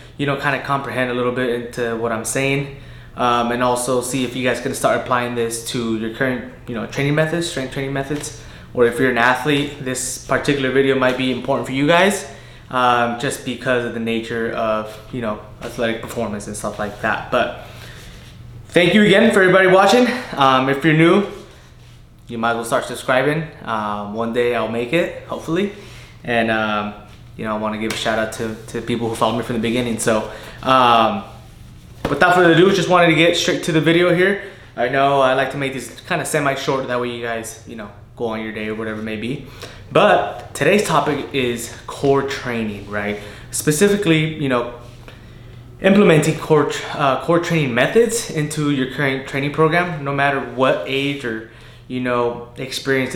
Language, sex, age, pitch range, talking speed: English, male, 20-39, 115-140 Hz, 195 wpm